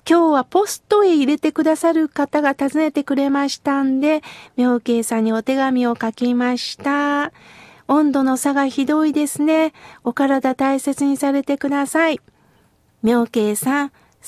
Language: Japanese